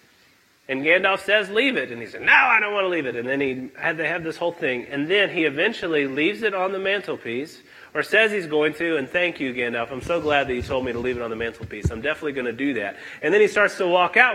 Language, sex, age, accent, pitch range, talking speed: English, male, 30-49, American, 160-270 Hz, 285 wpm